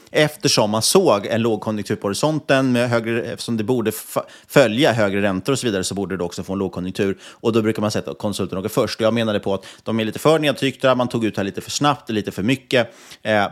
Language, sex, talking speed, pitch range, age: Swedish, male, 235 wpm, 95-125 Hz, 30-49